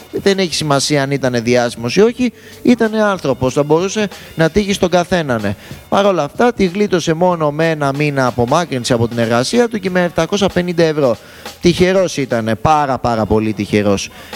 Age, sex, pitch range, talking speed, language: 20-39, male, 120-180 Hz, 165 wpm, Greek